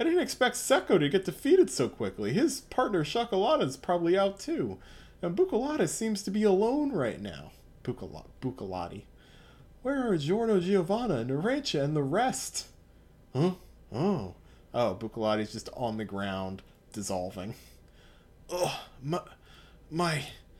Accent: American